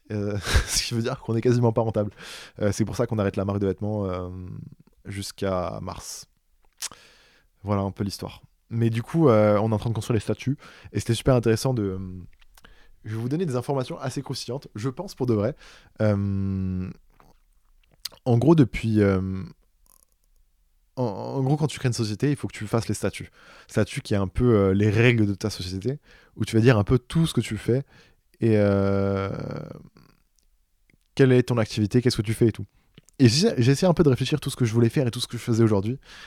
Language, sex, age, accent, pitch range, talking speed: French, male, 20-39, French, 100-125 Hz, 220 wpm